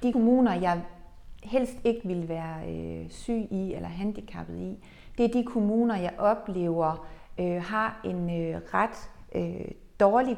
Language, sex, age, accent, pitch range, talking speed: Danish, female, 40-59, native, 175-225 Hz, 150 wpm